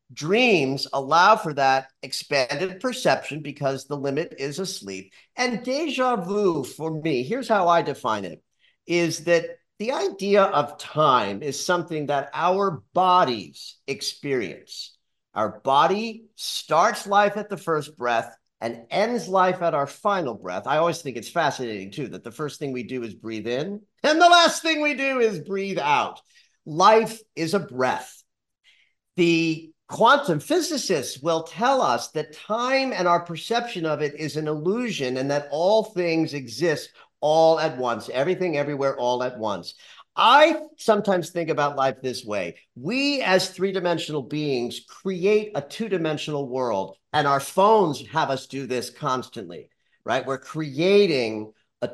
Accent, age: American, 50-69